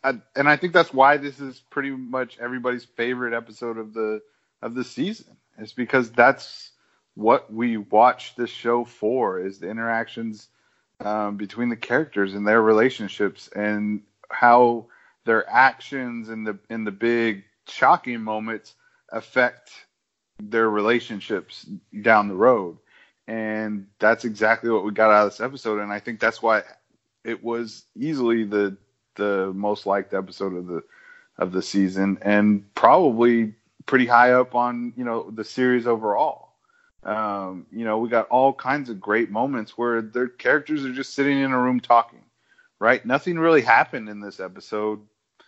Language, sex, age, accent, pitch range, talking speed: English, male, 30-49, American, 105-120 Hz, 160 wpm